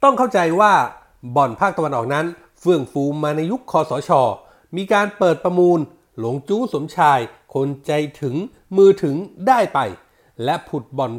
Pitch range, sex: 140-195 Hz, male